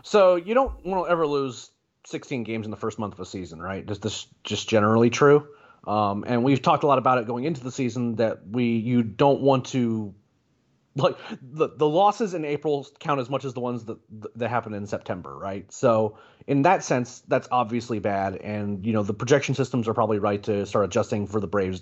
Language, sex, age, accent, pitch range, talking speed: English, male, 30-49, American, 110-135 Hz, 220 wpm